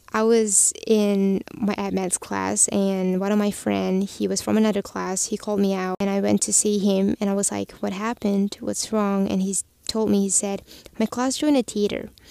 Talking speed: 220 wpm